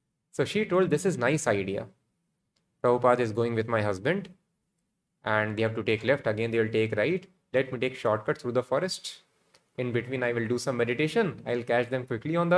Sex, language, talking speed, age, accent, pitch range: male, English, 220 wpm, 20-39, Indian, 115-165 Hz